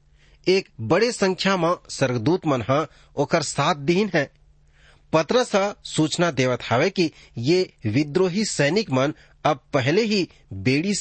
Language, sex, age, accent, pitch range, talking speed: English, male, 40-59, Indian, 115-185 Hz, 130 wpm